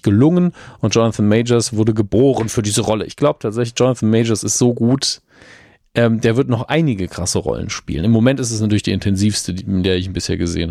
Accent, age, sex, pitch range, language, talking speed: German, 40-59, male, 105-130 Hz, German, 205 wpm